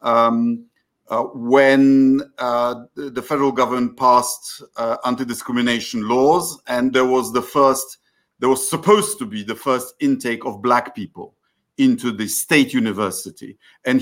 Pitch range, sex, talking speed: 120-185 Hz, male, 135 wpm